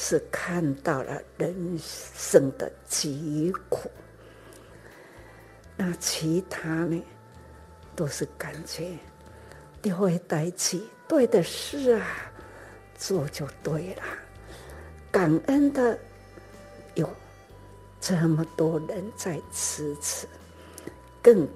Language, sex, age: Chinese, female, 60-79